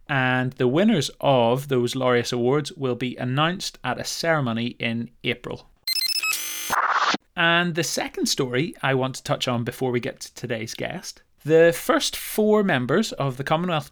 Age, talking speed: 30-49, 160 wpm